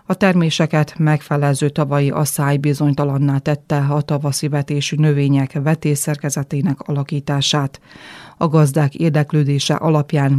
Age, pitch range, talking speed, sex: 30-49, 145-155 Hz, 100 wpm, female